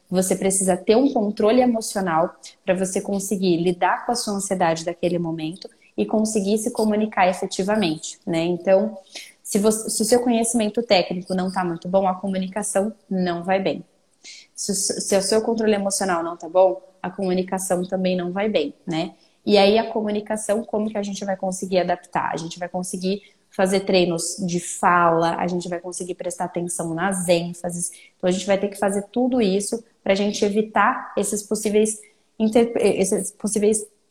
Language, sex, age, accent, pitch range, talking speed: Portuguese, female, 20-39, Brazilian, 185-220 Hz, 175 wpm